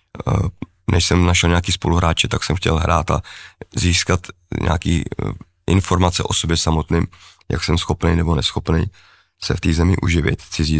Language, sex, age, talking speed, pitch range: Czech, male, 30-49, 150 wpm, 85-95 Hz